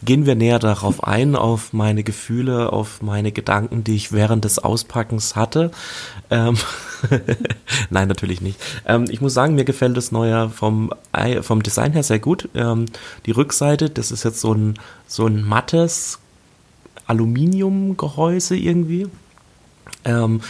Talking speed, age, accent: 145 wpm, 30-49, German